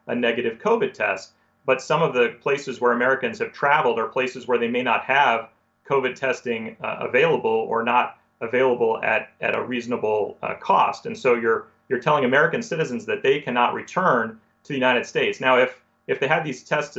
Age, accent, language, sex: 40-59, American, English, male